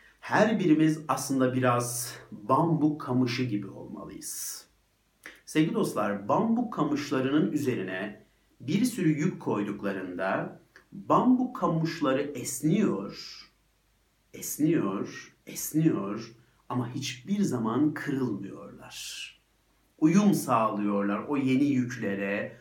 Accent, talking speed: native, 80 wpm